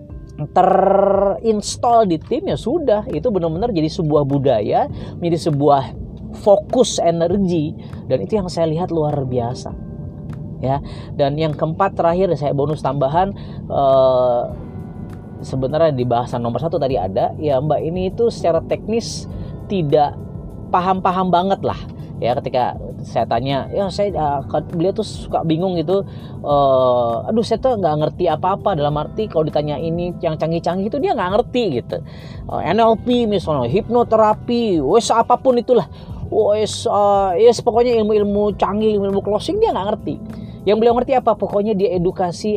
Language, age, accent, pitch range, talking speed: Indonesian, 30-49, native, 130-195 Hz, 145 wpm